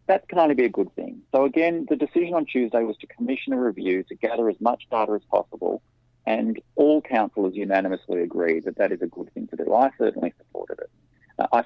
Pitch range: 100-130 Hz